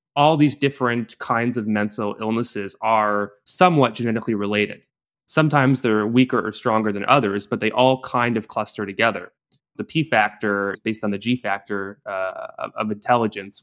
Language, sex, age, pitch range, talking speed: English, male, 20-39, 105-125 Hz, 165 wpm